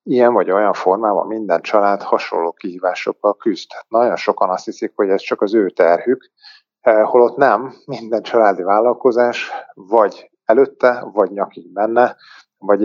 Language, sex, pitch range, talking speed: Hungarian, male, 95-125 Hz, 140 wpm